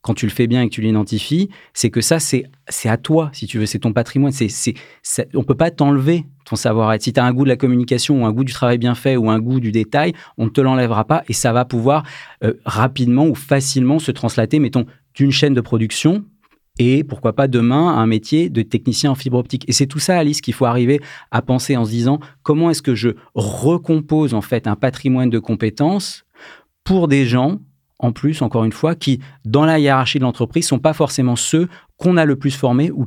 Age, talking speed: 40-59, 240 wpm